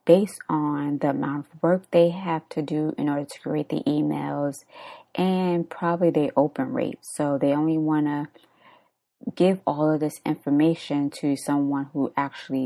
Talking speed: 160 wpm